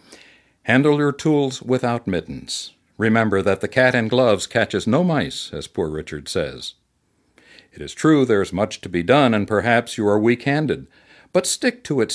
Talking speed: 180 wpm